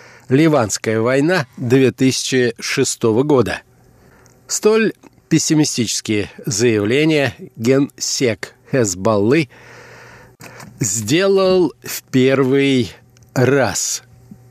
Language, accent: Russian, native